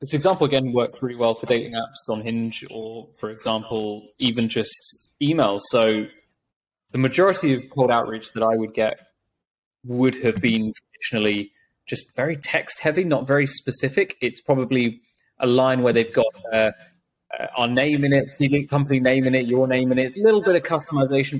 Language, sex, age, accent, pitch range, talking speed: English, male, 20-39, British, 115-145 Hz, 180 wpm